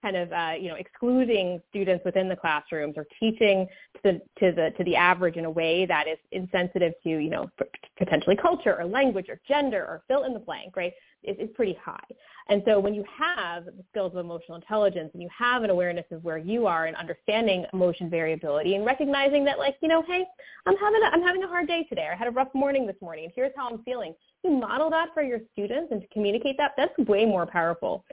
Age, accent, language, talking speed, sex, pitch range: 20-39, American, English, 235 wpm, female, 175-240 Hz